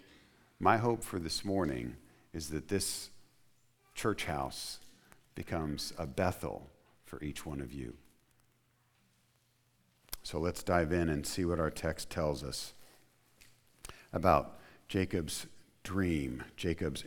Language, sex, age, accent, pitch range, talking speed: English, male, 50-69, American, 75-100 Hz, 115 wpm